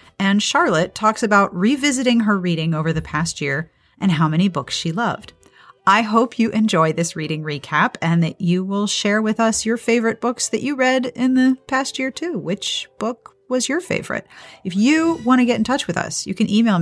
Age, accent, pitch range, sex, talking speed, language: 40-59, American, 165-230 Hz, female, 210 wpm, English